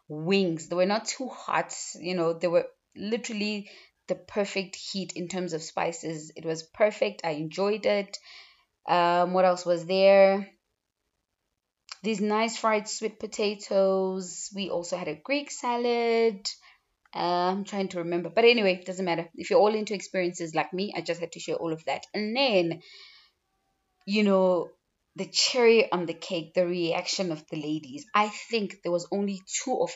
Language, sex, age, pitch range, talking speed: English, female, 20-39, 170-210 Hz, 170 wpm